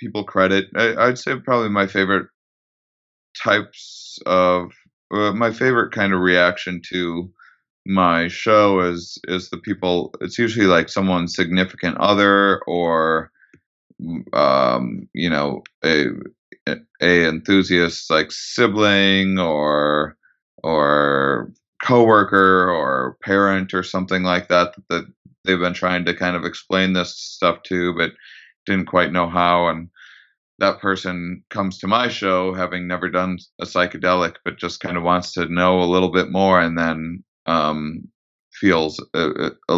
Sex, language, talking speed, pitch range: male, English, 140 wpm, 85-95 Hz